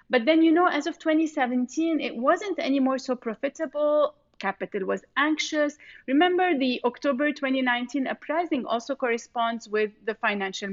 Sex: female